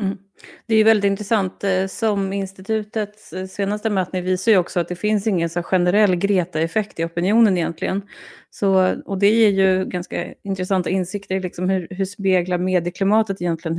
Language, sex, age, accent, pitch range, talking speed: Swedish, female, 30-49, native, 175-210 Hz, 165 wpm